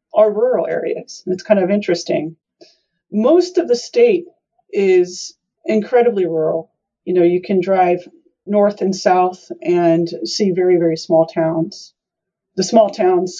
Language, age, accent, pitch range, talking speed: English, 40-59, American, 170-250 Hz, 140 wpm